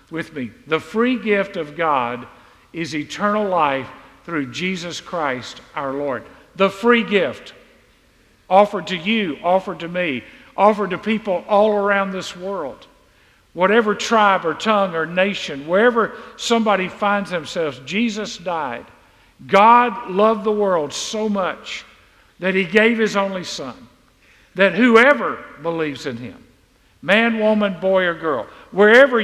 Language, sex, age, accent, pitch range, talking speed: English, male, 50-69, American, 145-210 Hz, 135 wpm